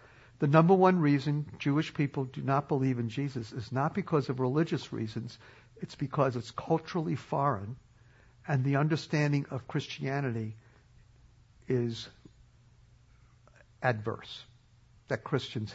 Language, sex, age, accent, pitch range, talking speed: English, male, 60-79, American, 120-155 Hz, 120 wpm